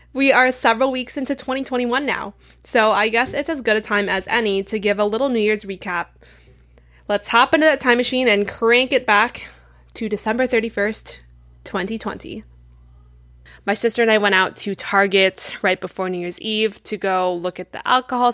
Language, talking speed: English, 185 wpm